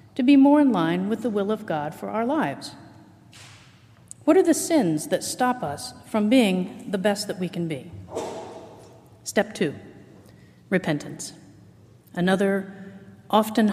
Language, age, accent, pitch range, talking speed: English, 50-69, American, 180-235 Hz, 145 wpm